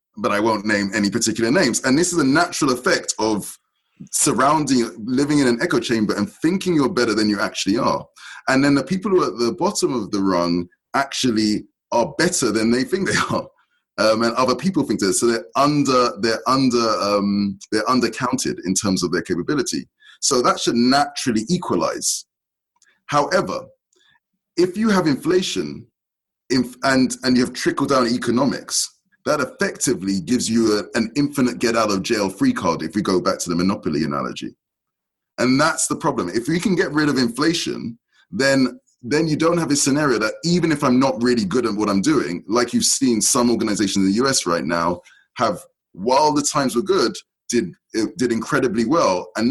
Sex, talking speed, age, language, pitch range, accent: male, 190 wpm, 20-39, English, 110-150 Hz, British